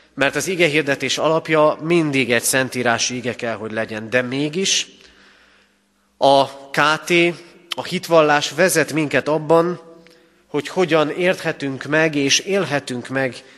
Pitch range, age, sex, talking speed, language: 130-165 Hz, 30-49, male, 120 wpm, Hungarian